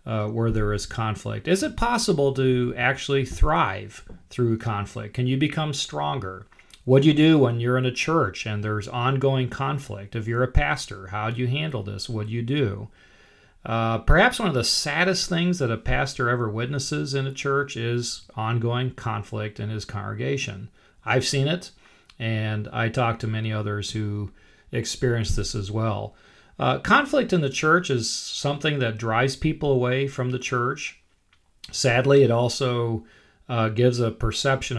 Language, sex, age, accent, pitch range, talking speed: English, male, 40-59, American, 110-135 Hz, 170 wpm